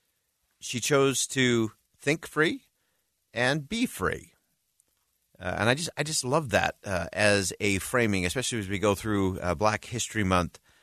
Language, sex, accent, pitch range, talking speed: English, male, American, 90-125 Hz, 160 wpm